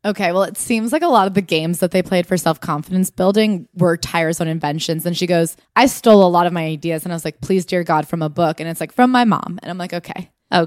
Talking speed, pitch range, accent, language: 280 wpm, 165-220 Hz, American, English